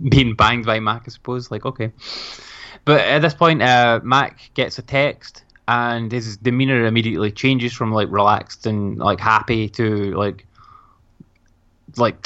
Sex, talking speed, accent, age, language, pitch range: male, 150 wpm, British, 20-39, English, 105-120 Hz